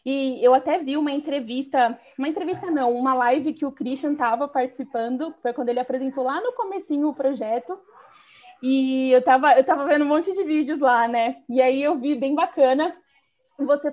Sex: female